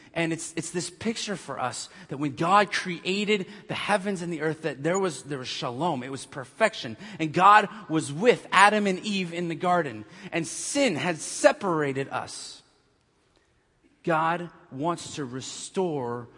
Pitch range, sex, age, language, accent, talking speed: 135-175 Hz, male, 30-49, English, American, 160 wpm